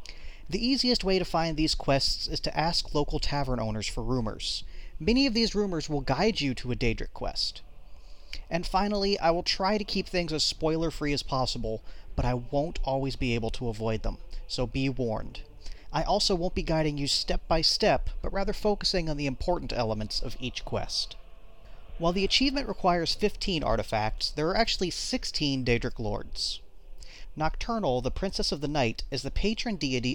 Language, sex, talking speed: English, male, 185 wpm